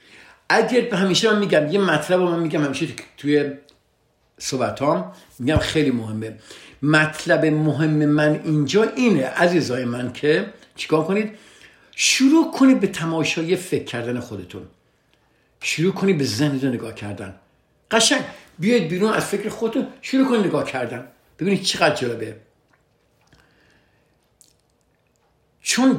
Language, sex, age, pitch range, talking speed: Persian, male, 60-79, 125-185 Hz, 120 wpm